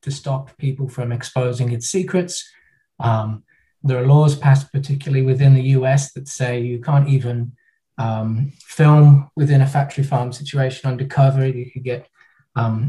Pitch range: 125-140 Hz